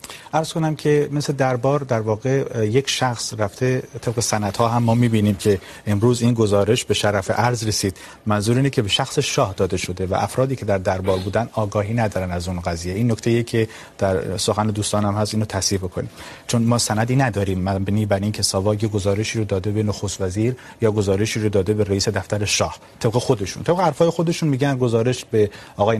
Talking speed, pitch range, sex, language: 190 wpm, 105-130 Hz, male, Urdu